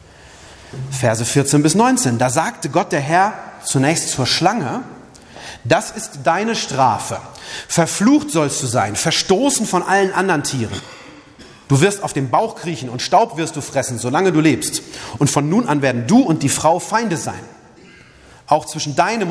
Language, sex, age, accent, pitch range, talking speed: German, male, 40-59, German, 125-170 Hz, 165 wpm